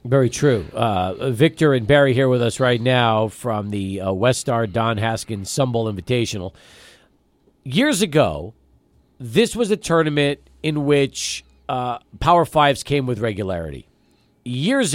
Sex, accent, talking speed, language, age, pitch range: male, American, 140 wpm, English, 40-59, 125-180 Hz